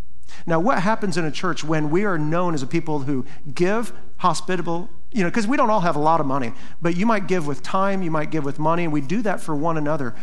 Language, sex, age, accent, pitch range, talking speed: English, male, 40-59, American, 145-200 Hz, 265 wpm